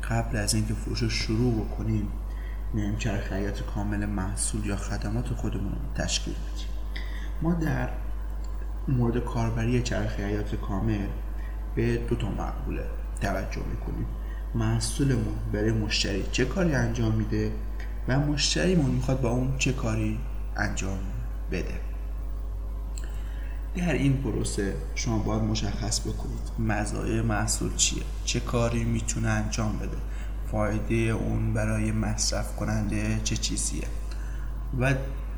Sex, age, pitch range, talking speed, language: male, 30-49, 100-120 Hz, 115 wpm, Persian